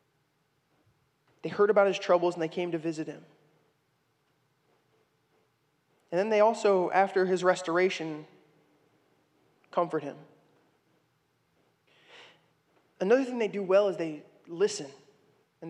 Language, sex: English, male